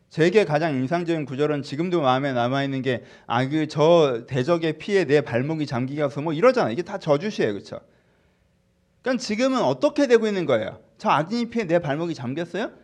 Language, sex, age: Korean, male, 30-49